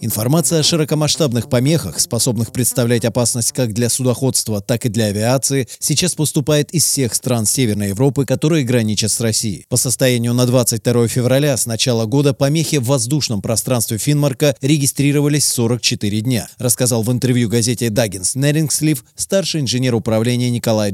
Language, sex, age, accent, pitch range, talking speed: Russian, male, 30-49, native, 115-135 Hz, 145 wpm